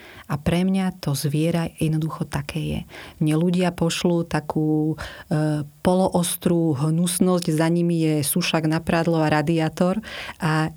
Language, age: Slovak, 30-49